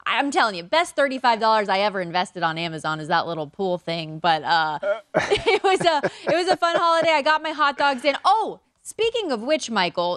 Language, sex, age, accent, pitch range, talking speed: English, female, 20-39, American, 195-280 Hz, 210 wpm